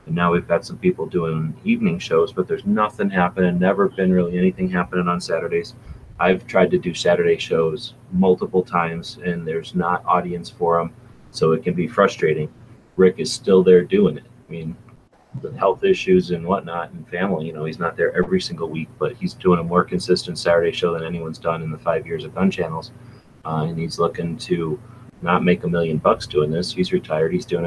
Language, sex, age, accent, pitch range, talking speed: English, male, 30-49, American, 80-95 Hz, 205 wpm